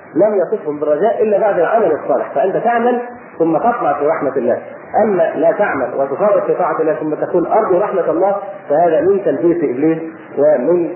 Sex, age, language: male, 40-59, Arabic